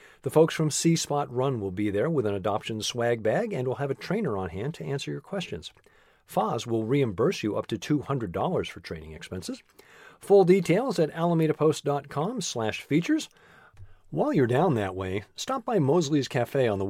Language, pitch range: English, 105-165 Hz